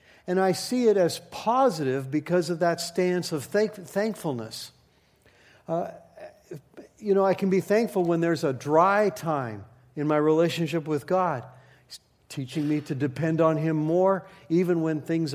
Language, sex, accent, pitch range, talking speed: English, male, American, 135-175 Hz, 160 wpm